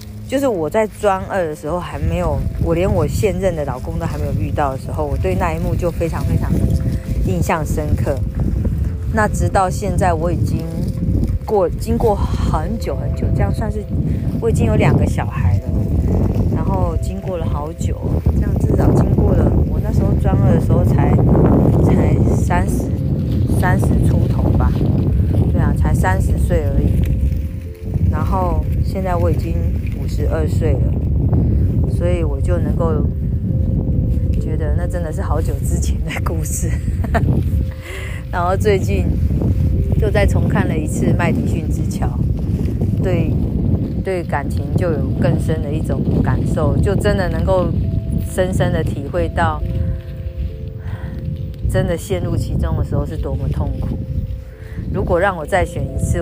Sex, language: female, Chinese